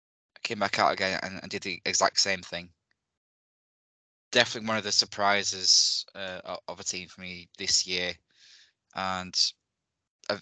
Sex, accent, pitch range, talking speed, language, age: male, British, 90-100 Hz, 155 wpm, English, 20-39